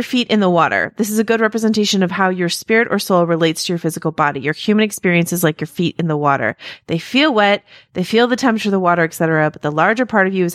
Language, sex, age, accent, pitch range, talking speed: English, female, 30-49, American, 160-200 Hz, 275 wpm